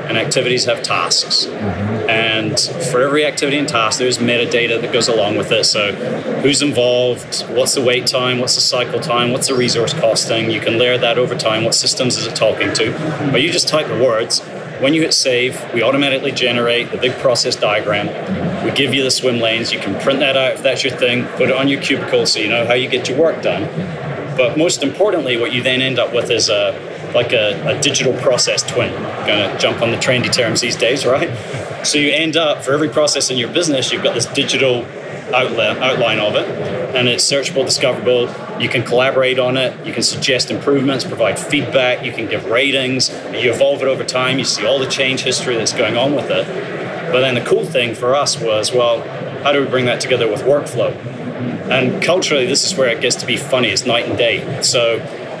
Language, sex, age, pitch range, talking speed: English, male, 30-49, 120-135 Hz, 220 wpm